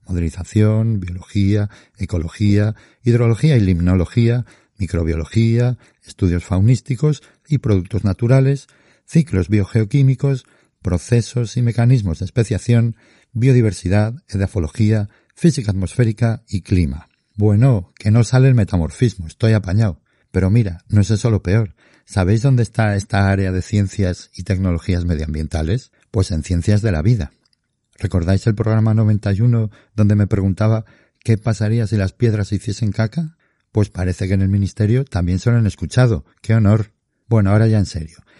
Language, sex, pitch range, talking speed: Spanish, male, 95-115 Hz, 140 wpm